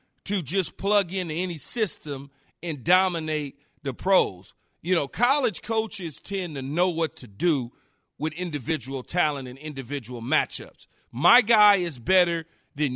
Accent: American